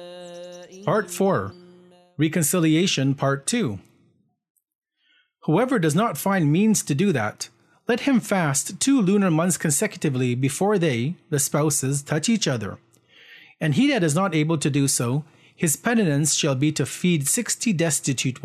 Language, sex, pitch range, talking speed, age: English, male, 140-195 Hz, 145 wpm, 40-59